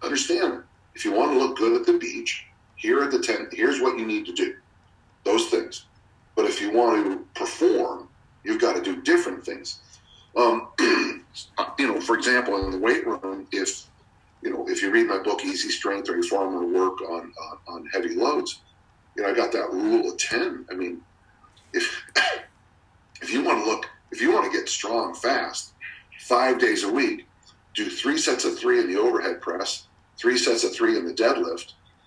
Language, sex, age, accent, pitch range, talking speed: English, male, 40-59, American, 345-380 Hz, 200 wpm